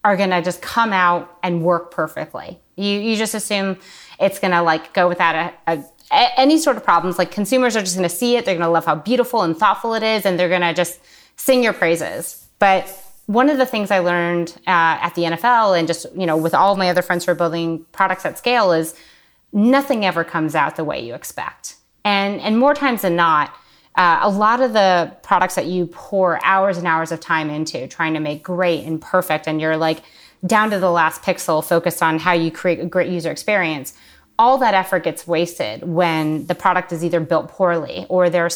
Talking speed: 225 wpm